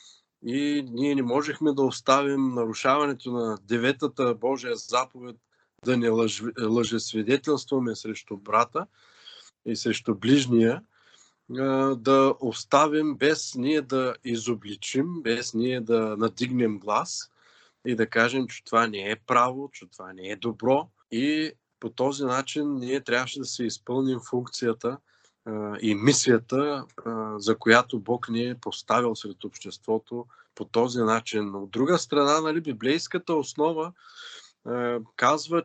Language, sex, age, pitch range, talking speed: Bulgarian, male, 20-39, 115-145 Hz, 125 wpm